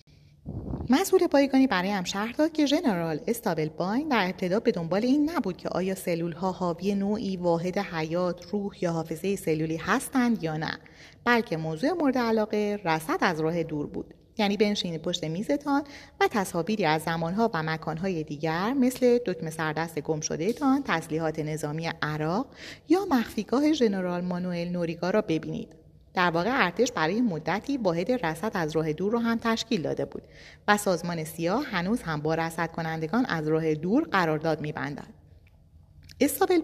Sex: female